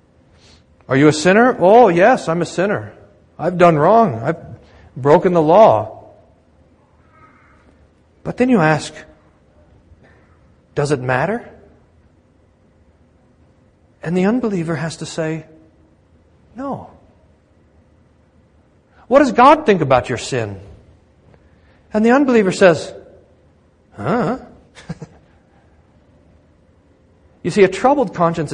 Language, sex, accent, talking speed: English, male, American, 100 wpm